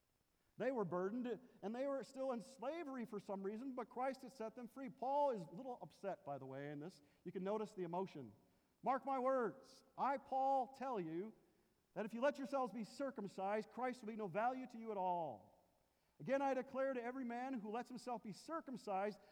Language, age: English, 40-59